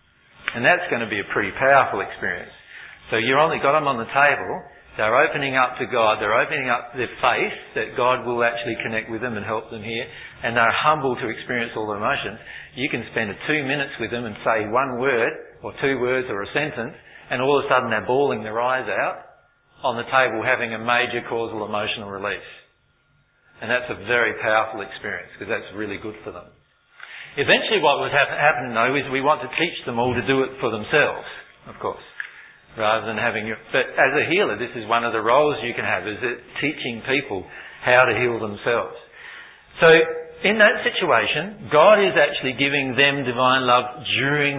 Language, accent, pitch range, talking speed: English, Australian, 115-145 Hz, 200 wpm